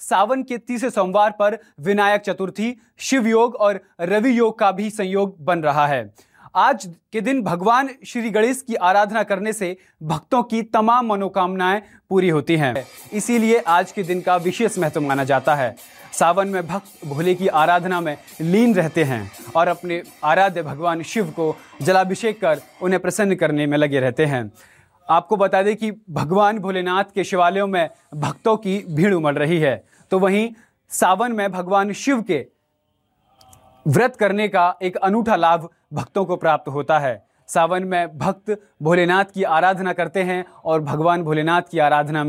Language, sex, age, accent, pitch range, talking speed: English, male, 30-49, Indian, 160-210 Hz, 125 wpm